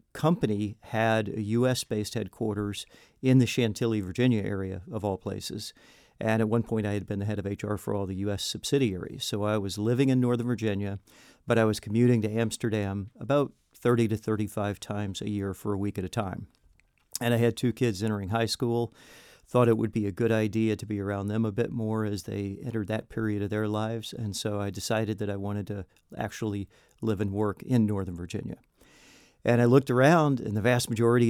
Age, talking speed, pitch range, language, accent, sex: 40-59, 205 wpm, 105-115 Hz, English, American, male